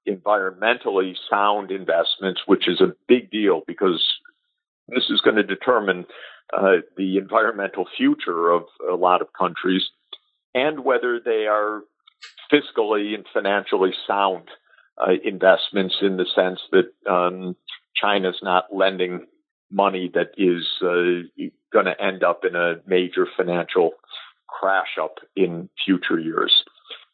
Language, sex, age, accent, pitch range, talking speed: English, male, 50-69, American, 90-135 Hz, 125 wpm